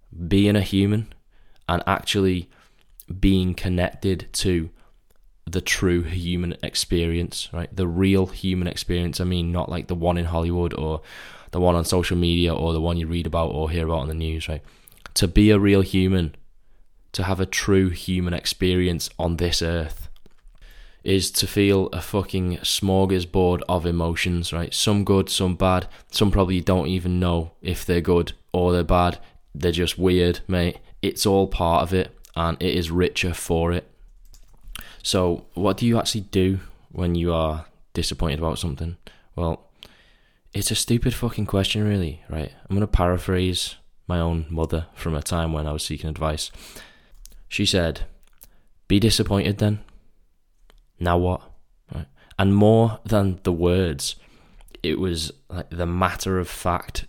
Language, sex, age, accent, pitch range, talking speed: English, male, 20-39, British, 85-95 Hz, 155 wpm